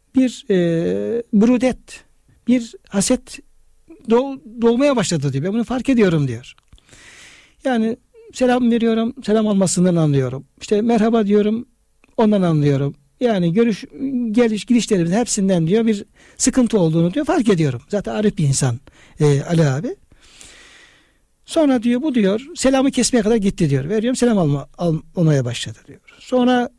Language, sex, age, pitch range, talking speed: Turkish, male, 60-79, 150-225 Hz, 135 wpm